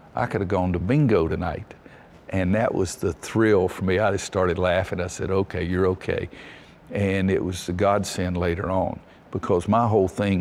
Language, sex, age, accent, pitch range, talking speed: English, male, 50-69, American, 90-100 Hz, 195 wpm